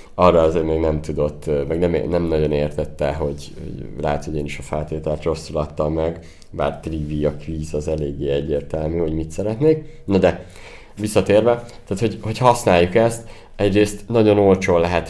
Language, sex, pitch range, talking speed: Hungarian, male, 80-105 Hz, 165 wpm